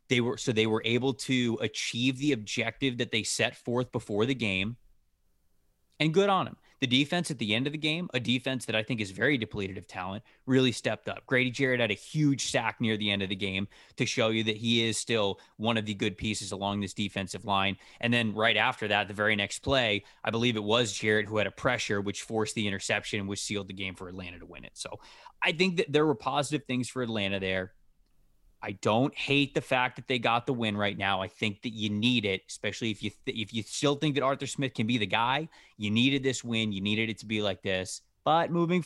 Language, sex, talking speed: English, male, 240 wpm